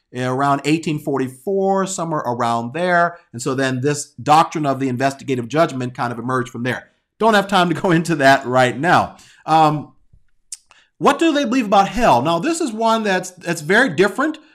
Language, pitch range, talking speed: English, 140-185 Hz, 175 wpm